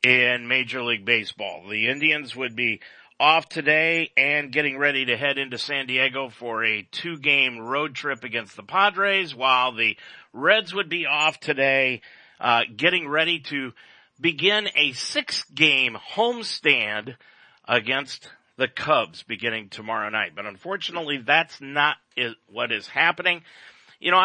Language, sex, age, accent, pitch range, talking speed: English, male, 40-59, American, 120-160 Hz, 140 wpm